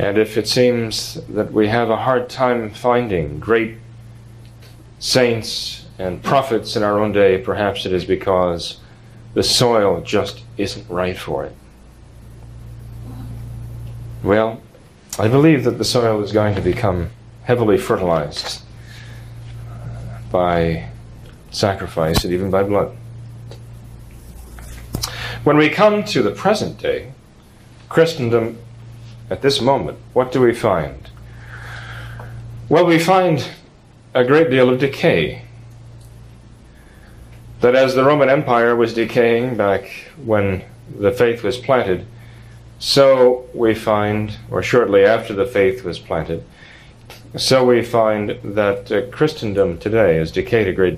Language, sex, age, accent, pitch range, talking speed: English, male, 40-59, American, 105-125 Hz, 125 wpm